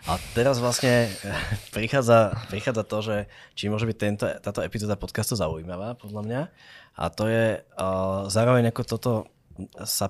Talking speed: 150 wpm